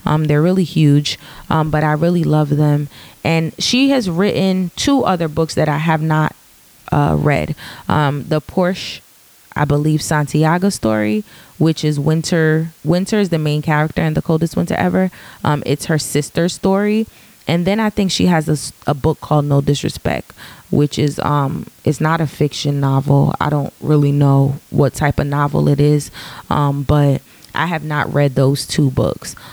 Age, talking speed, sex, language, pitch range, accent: 20-39, 175 wpm, female, English, 145-180 Hz, American